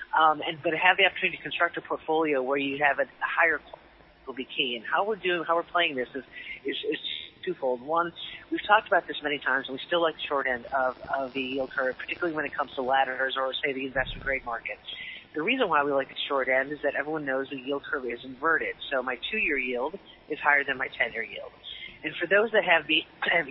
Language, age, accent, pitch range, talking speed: English, 40-59, American, 135-170 Hz, 250 wpm